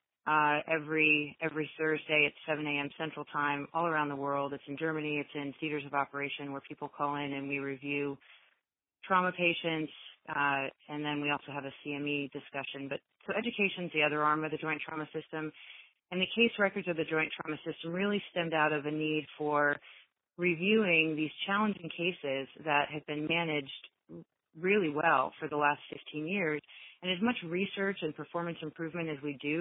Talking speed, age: 185 wpm, 30-49